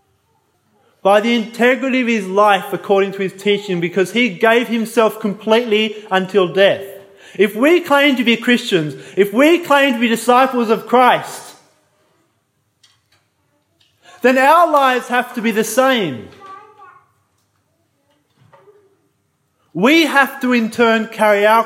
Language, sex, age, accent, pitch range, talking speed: English, male, 20-39, Australian, 200-260 Hz, 125 wpm